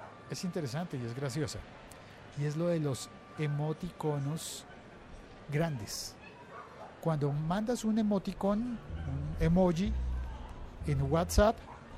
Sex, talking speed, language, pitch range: male, 95 wpm, Spanish, 120-185 Hz